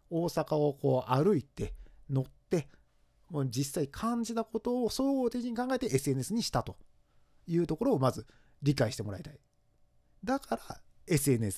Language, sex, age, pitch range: Japanese, male, 40-59, 120-200 Hz